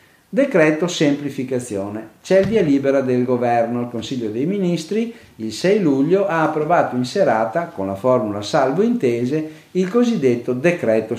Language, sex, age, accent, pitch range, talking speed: Italian, male, 50-69, native, 115-165 Hz, 145 wpm